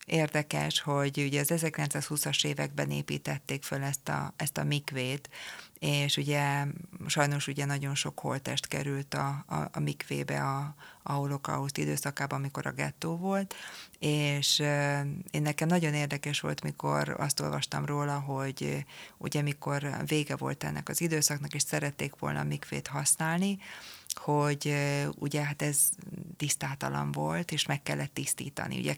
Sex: female